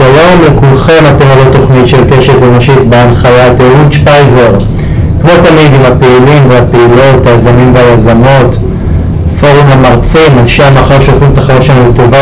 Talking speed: 135 wpm